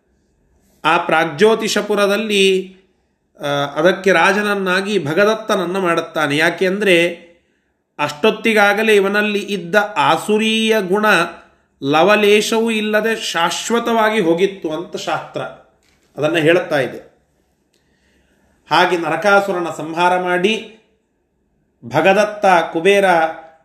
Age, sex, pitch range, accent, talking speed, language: 30-49, male, 155-205 Hz, native, 70 wpm, Kannada